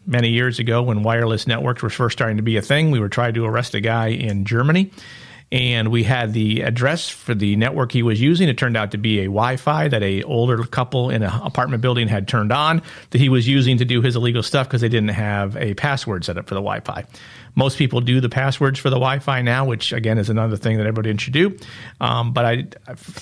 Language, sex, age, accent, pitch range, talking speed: English, male, 40-59, American, 115-130 Hz, 240 wpm